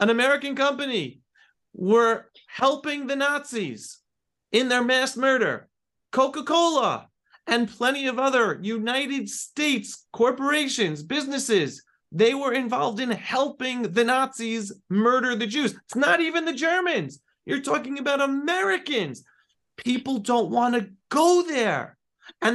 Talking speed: 120 wpm